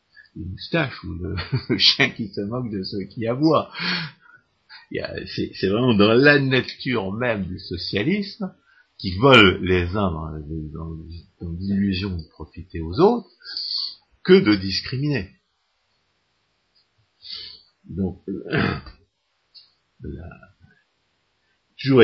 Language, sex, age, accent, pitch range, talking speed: French, male, 50-69, French, 80-105 Hz, 105 wpm